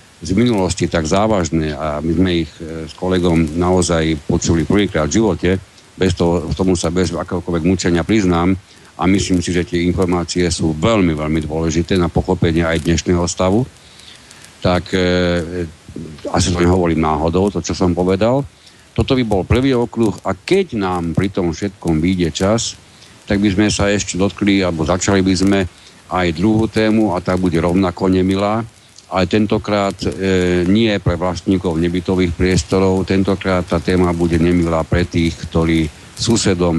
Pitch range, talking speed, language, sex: 85-100 Hz, 160 wpm, Slovak, male